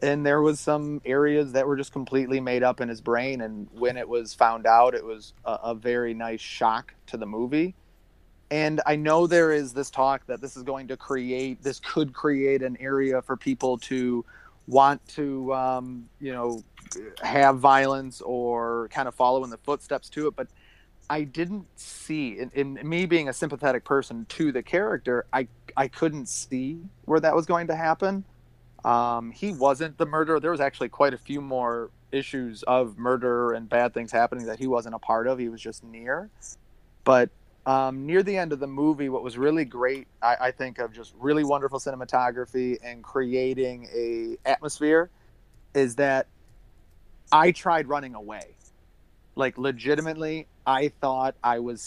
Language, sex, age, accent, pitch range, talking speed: English, male, 30-49, American, 120-145 Hz, 180 wpm